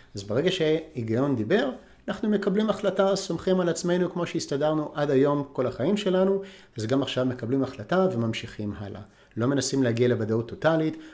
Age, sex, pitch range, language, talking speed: 50-69, male, 115-170 Hz, Hebrew, 155 wpm